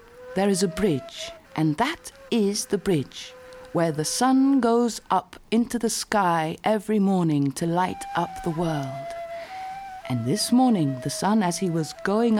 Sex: female